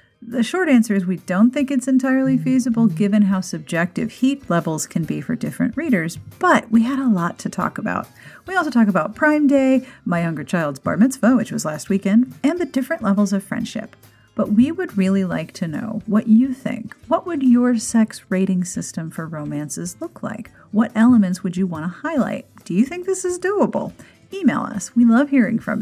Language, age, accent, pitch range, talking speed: English, 40-59, American, 185-255 Hz, 205 wpm